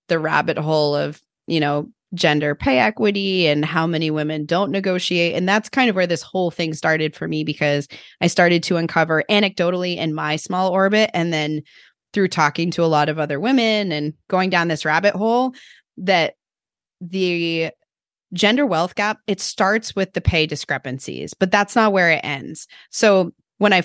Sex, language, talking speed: female, English, 180 wpm